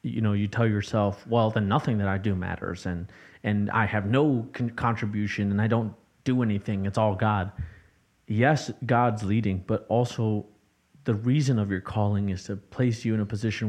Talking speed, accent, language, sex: 190 wpm, American, English, male